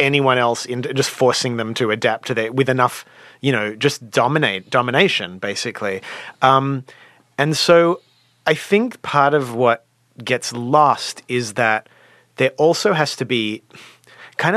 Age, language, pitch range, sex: 30-49, English, 115-145 Hz, male